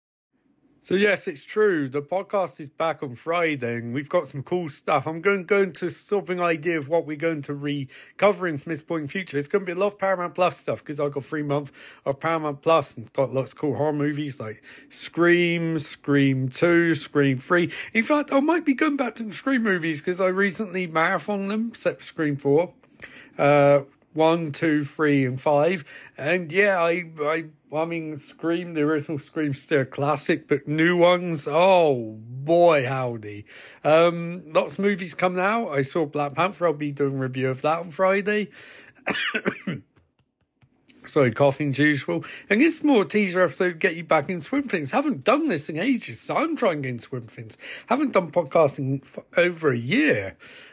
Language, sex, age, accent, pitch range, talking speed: English, male, 40-59, British, 145-185 Hz, 195 wpm